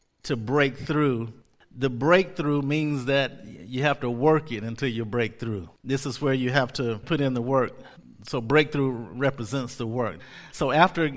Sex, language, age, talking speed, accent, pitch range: male, English, 50-69, 175 wpm, American, 120-145 Hz